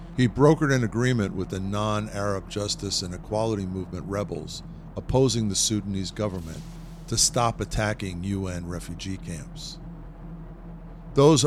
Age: 50-69